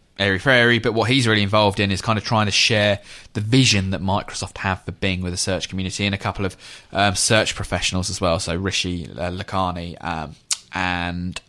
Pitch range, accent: 95-110 Hz, British